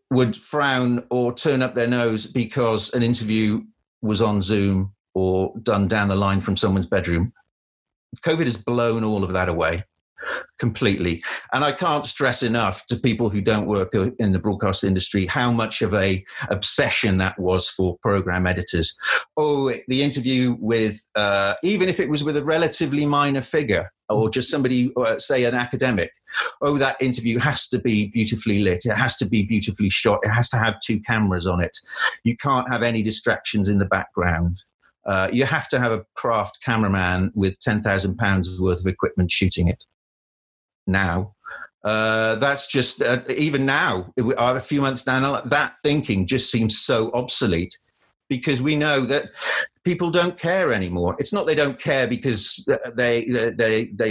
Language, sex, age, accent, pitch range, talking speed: English, male, 40-59, British, 100-135 Hz, 170 wpm